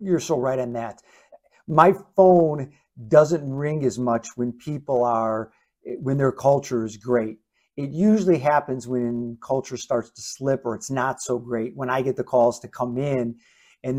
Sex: male